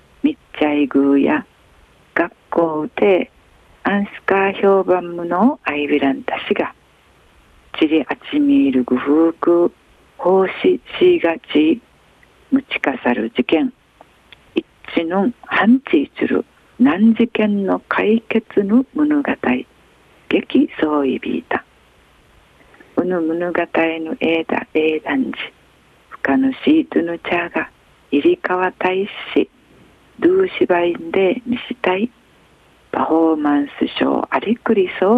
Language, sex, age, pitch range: Japanese, female, 50-69, 160-255 Hz